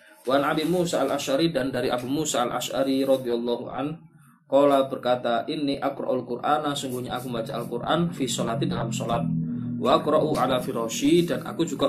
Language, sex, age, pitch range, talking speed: Malay, male, 20-39, 120-150 Hz, 160 wpm